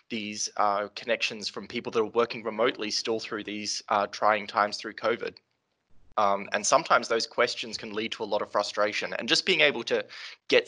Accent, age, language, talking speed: Australian, 20-39, English, 195 wpm